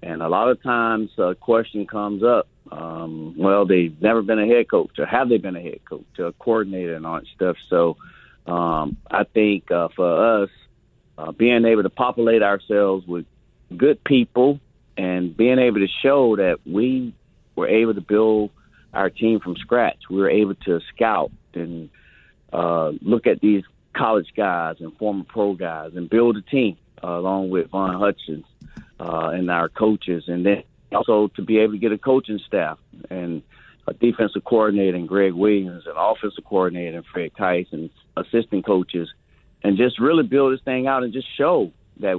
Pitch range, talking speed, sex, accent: 90-110 Hz, 180 wpm, male, American